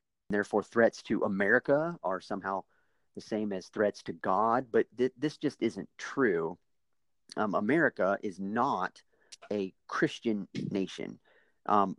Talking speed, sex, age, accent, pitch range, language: 130 wpm, male, 40-59, American, 100-130 Hz, English